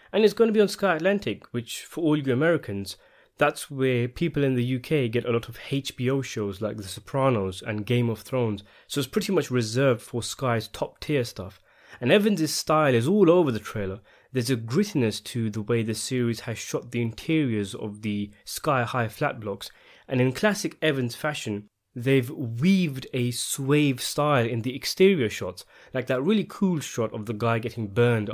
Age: 20-39